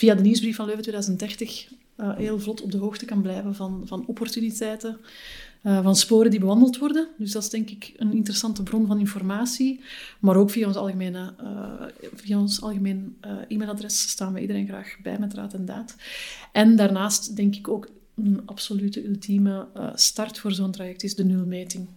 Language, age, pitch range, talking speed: Dutch, 30-49, 200-225 Hz, 175 wpm